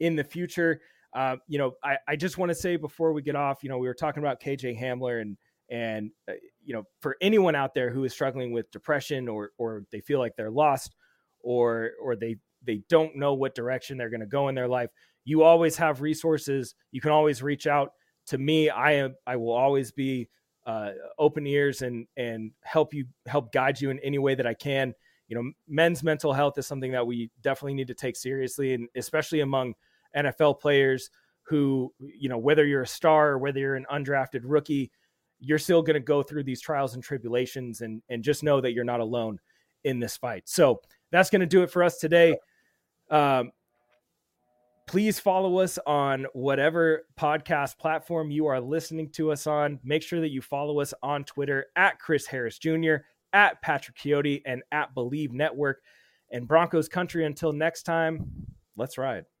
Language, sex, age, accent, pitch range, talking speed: English, male, 30-49, American, 125-155 Hz, 200 wpm